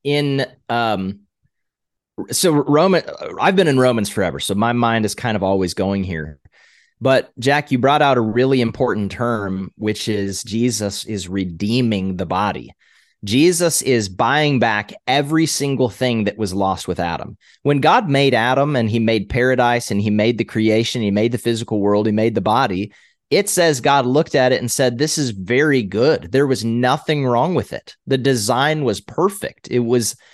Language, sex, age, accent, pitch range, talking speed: English, male, 30-49, American, 110-145 Hz, 180 wpm